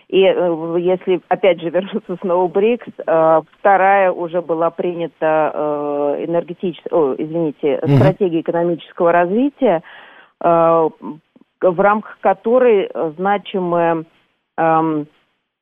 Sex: female